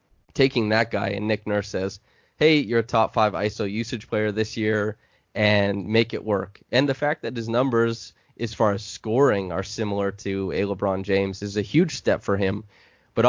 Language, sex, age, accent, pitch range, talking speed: English, male, 20-39, American, 100-115 Hz, 200 wpm